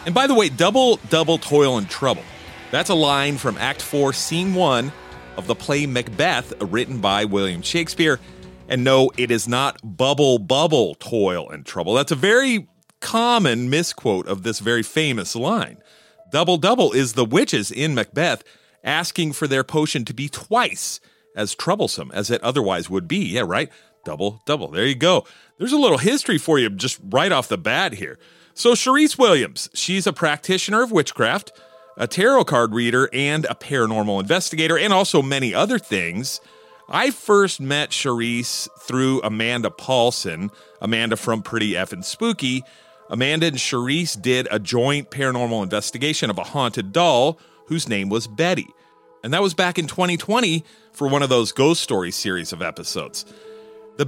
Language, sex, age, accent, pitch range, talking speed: English, male, 40-59, American, 120-175 Hz, 165 wpm